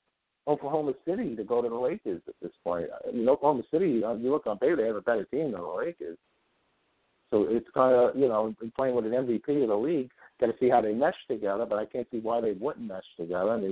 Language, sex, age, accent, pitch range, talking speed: English, male, 50-69, American, 105-130 Hz, 250 wpm